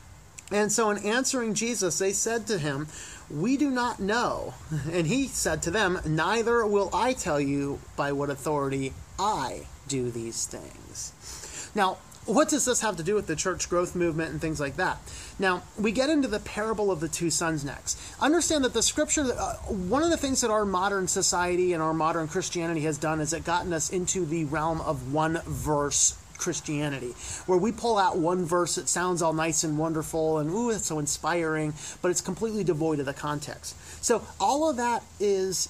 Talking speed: 195 wpm